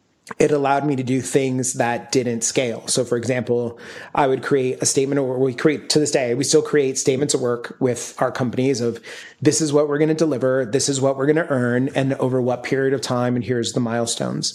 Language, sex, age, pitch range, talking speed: English, male, 30-49, 125-140 Hz, 235 wpm